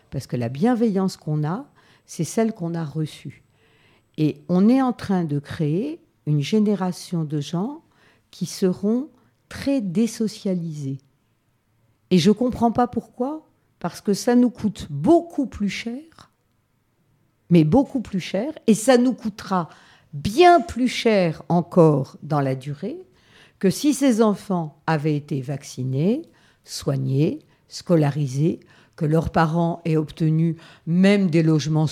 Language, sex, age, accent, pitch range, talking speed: French, female, 50-69, French, 145-200 Hz, 135 wpm